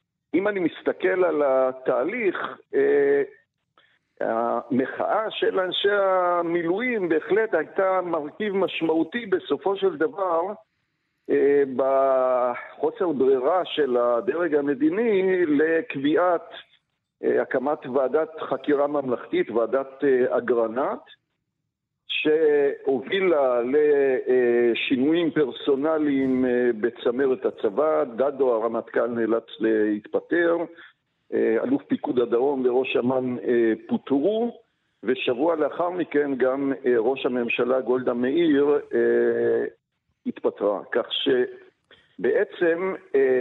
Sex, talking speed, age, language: male, 80 wpm, 50-69, Hebrew